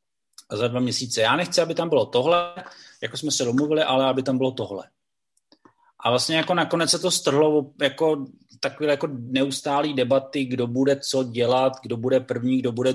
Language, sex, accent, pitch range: Czech, male, native, 120-140 Hz